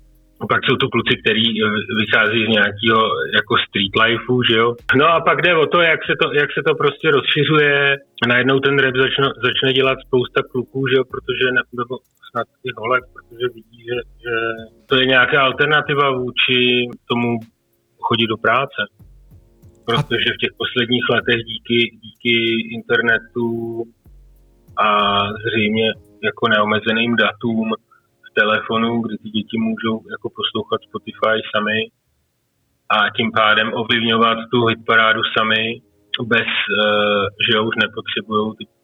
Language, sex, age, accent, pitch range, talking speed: Czech, male, 30-49, native, 110-125 Hz, 135 wpm